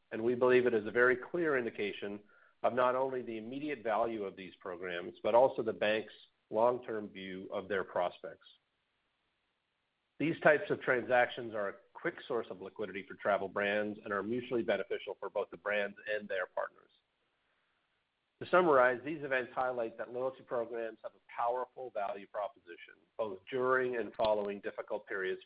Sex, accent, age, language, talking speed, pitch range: male, American, 50-69, English, 165 wpm, 105-130 Hz